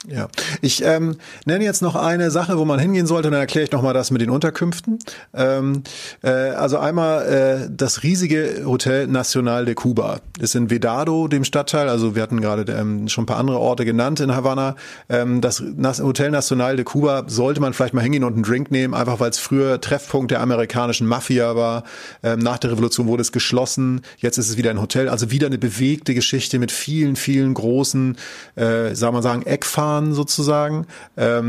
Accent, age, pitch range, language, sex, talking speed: German, 30-49, 120-145 Hz, German, male, 200 wpm